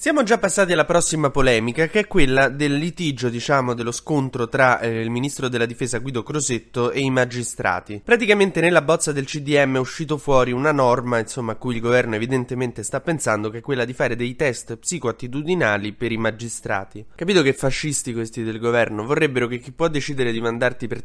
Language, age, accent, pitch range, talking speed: Italian, 20-39, native, 110-135 Hz, 195 wpm